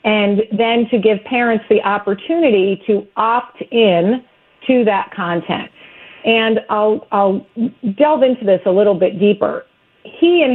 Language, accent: English, American